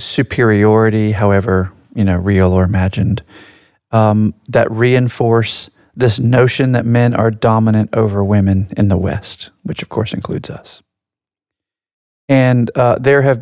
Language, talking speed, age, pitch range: English, 135 wpm, 40-59, 100-120 Hz